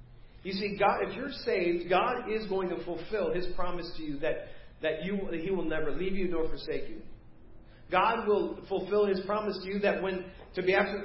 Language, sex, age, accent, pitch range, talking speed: English, male, 40-59, American, 145-195 Hz, 210 wpm